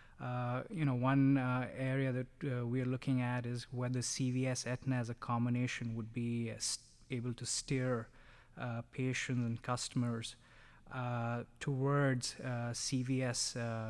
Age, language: 20-39, English